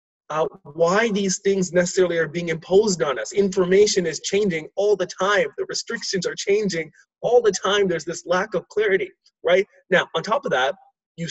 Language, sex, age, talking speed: English, male, 30-49, 185 wpm